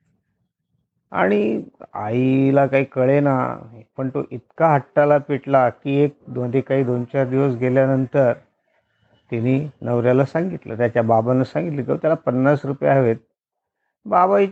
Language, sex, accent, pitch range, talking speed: Marathi, male, native, 125-165 Hz, 130 wpm